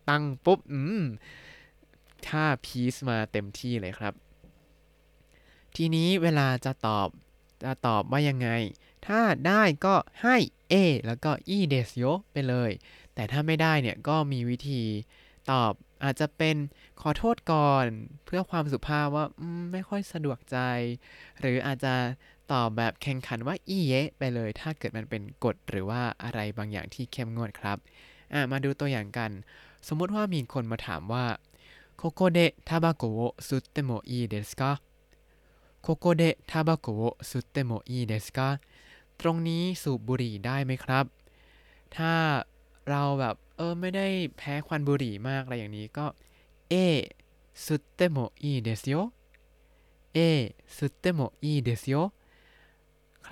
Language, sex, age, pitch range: Thai, male, 20-39, 115-160 Hz